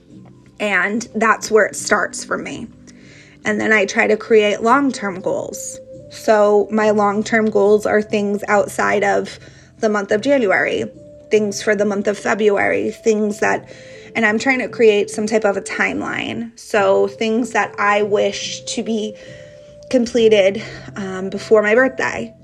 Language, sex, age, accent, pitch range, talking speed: English, female, 20-39, American, 195-220 Hz, 150 wpm